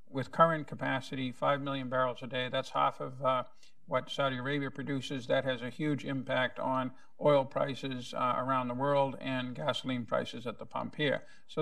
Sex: male